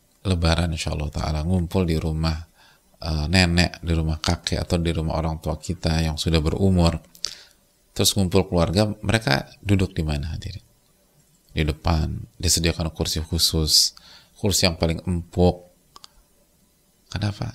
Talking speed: 130 wpm